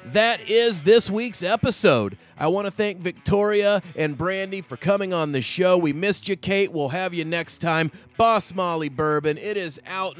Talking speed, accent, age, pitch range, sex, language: 190 wpm, American, 30-49, 135-175 Hz, male, English